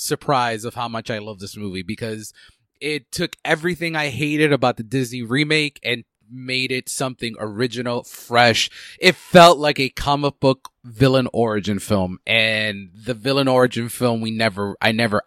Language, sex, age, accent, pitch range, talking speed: English, male, 30-49, American, 110-140 Hz, 165 wpm